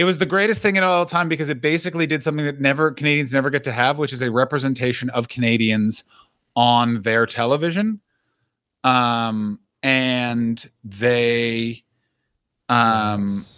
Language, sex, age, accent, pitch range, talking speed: English, male, 30-49, American, 130-165 Hz, 145 wpm